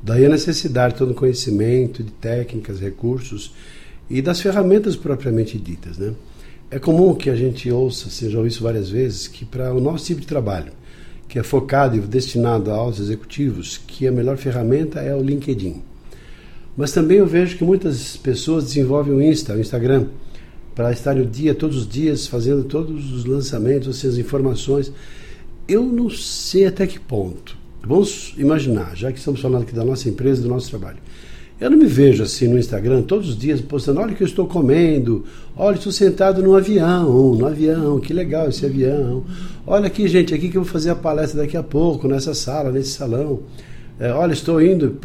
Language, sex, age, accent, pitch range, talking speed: Portuguese, male, 60-79, Brazilian, 120-155 Hz, 190 wpm